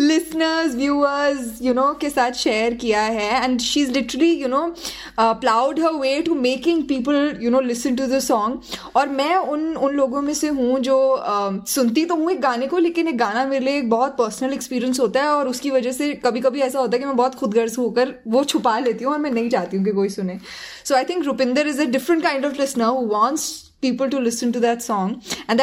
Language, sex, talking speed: Hindi, female, 235 wpm